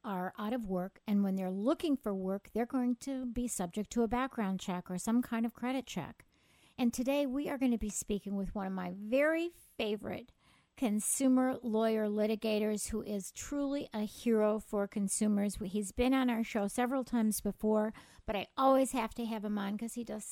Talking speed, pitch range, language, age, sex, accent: 200 wpm, 210-260 Hz, English, 50-69, female, American